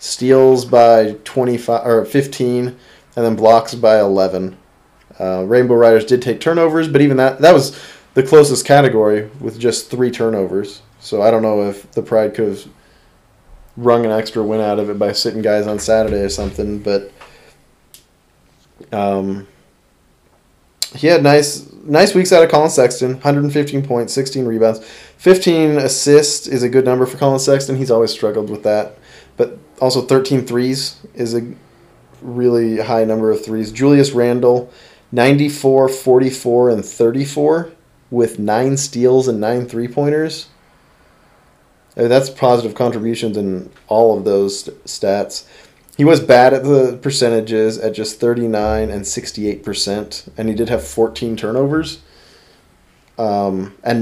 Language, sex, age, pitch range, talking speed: English, male, 20-39, 110-135 Hz, 150 wpm